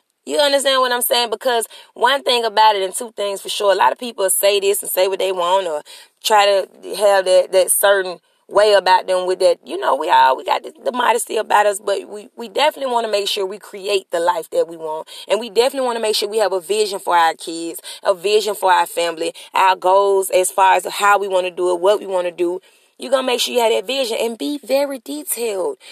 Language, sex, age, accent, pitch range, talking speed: English, female, 30-49, American, 195-295 Hz, 255 wpm